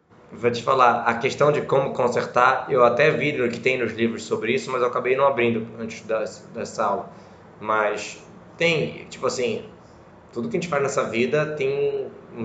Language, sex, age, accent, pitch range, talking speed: Portuguese, male, 20-39, Brazilian, 110-130 Hz, 185 wpm